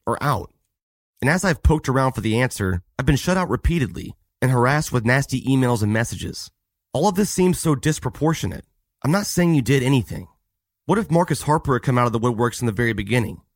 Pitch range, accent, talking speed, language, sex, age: 105-155 Hz, American, 215 wpm, English, male, 30-49